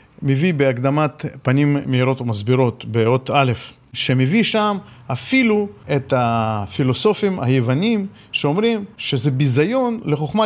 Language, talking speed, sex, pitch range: Hebrew, 100 wpm, male, 130-195 Hz